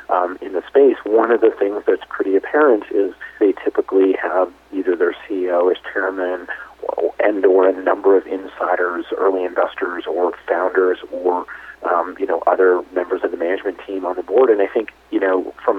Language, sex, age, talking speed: English, male, 40-59, 190 wpm